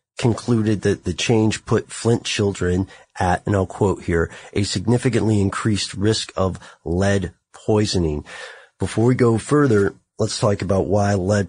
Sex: male